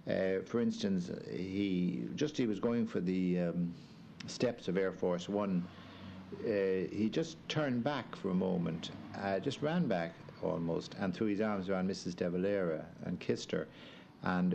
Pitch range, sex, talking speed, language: 90-115 Hz, male, 170 wpm, English